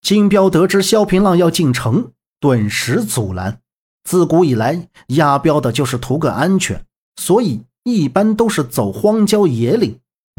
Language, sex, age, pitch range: Chinese, male, 50-69, 120-165 Hz